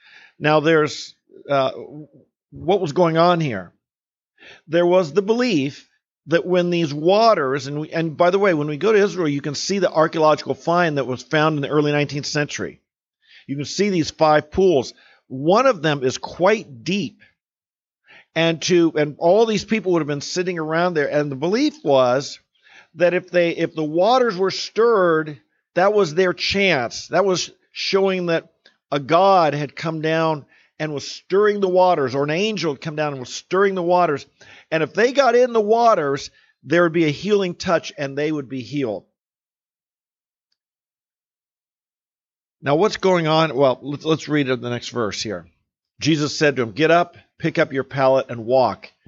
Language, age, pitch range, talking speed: English, 50-69, 140-185 Hz, 180 wpm